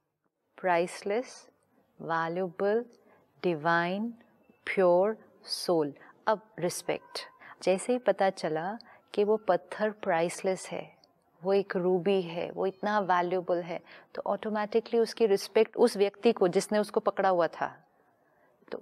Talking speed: 120 wpm